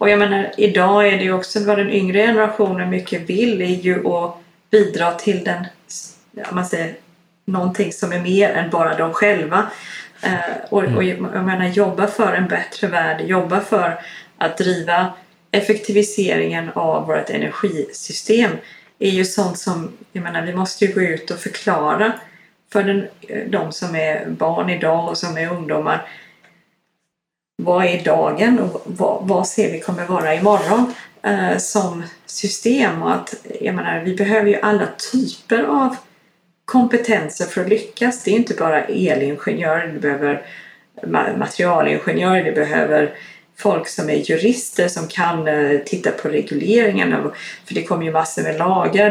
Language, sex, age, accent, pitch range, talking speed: Swedish, female, 30-49, native, 175-210 Hz, 155 wpm